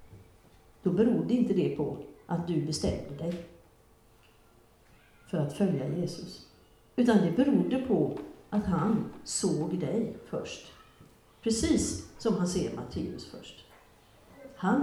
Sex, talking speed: female, 115 wpm